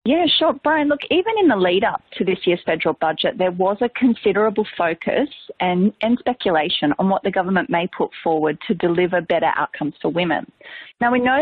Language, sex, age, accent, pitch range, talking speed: English, female, 30-49, Australian, 170-250 Hz, 200 wpm